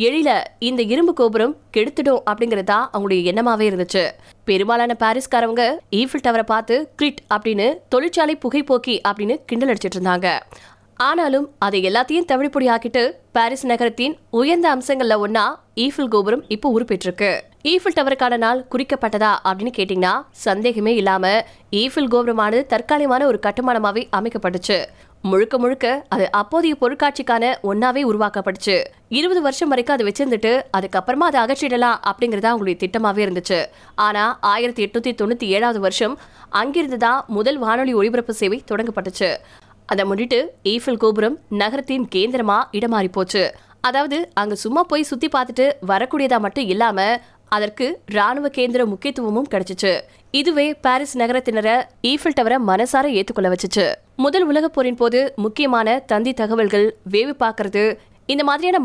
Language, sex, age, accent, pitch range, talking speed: Tamil, female, 20-39, native, 210-265 Hz, 85 wpm